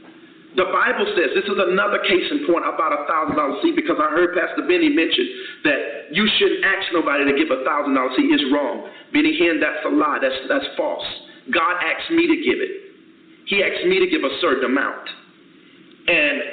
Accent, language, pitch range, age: American, English, 300-360 Hz, 40-59